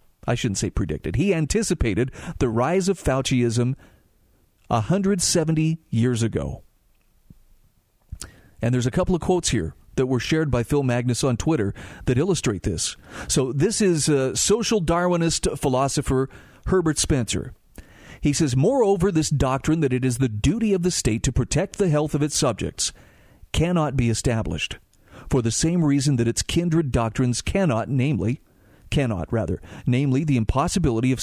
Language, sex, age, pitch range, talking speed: English, male, 40-59, 115-165 Hz, 150 wpm